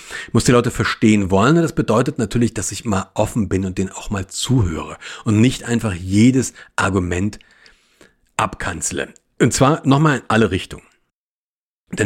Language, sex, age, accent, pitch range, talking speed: German, male, 40-59, German, 110-150 Hz, 155 wpm